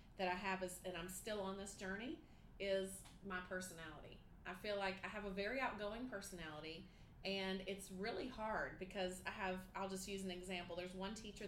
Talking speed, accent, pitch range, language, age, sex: 195 wpm, American, 180-210 Hz, English, 30-49, female